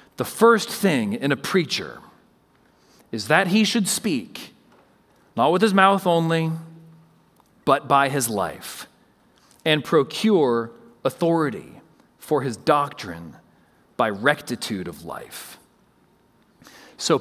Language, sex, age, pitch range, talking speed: English, male, 40-59, 155-215 Hz, 110 wpm